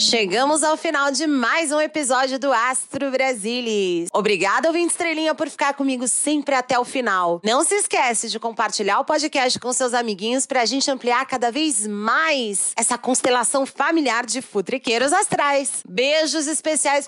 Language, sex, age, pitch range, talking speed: Portuguese, female, 30-49, 230-305 Hz, 155 wpm